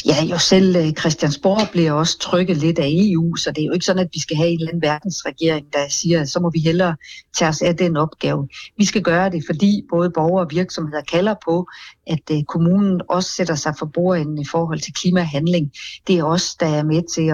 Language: Danish